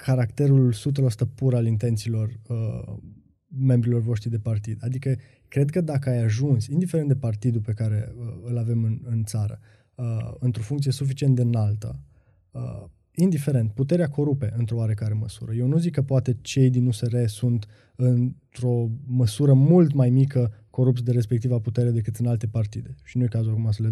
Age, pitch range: 20-39, 115-135 Hz